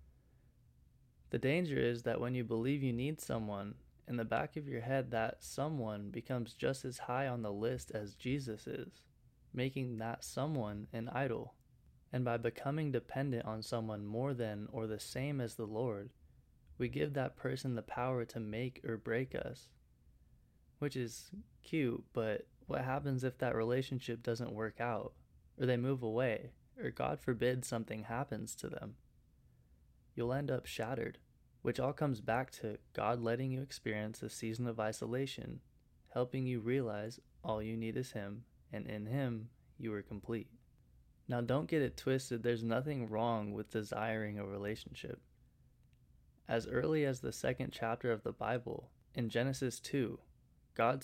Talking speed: 160 wpm